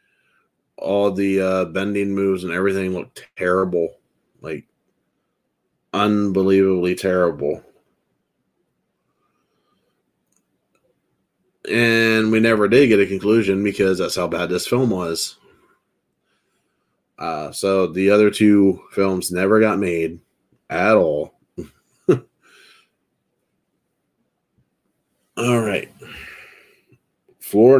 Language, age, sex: English, 30-49, male